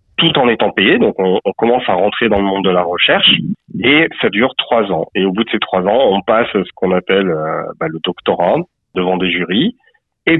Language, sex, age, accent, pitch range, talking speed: French, male, 40-59, French, 95-120 Hz, 235 wpm